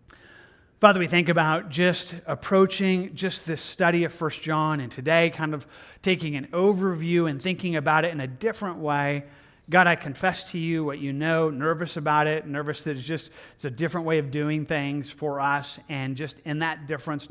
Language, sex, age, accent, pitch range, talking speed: English, male, 30-49, American, 145-175 Hz, 195 wpm